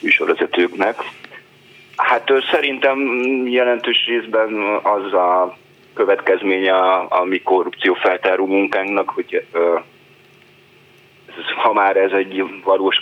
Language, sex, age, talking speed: Hungarian, male, 30-49, 90 wpm